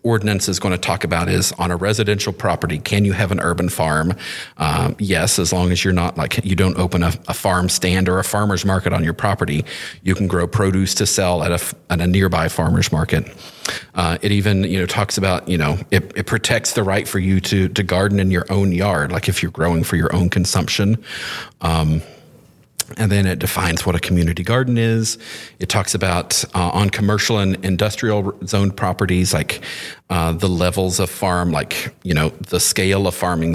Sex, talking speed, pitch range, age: male, 205 wpm, 90-105 Hz, 40-59